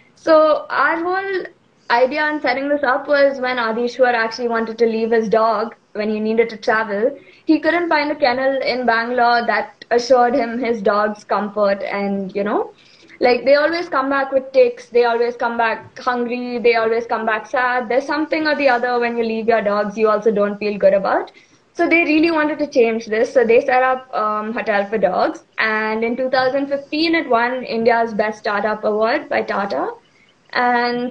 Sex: female